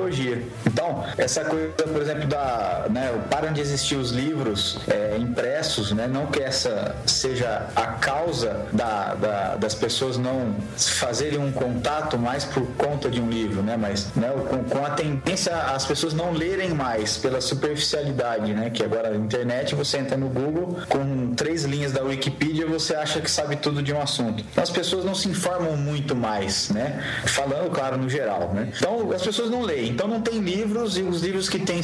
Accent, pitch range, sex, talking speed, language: Brazilian, 125-170 Hz, male, 190 wpm, Portuguese